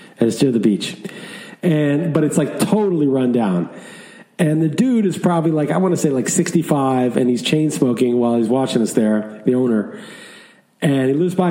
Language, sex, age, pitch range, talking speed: English, male, 40-59, 130-170 Hz, 205 wpm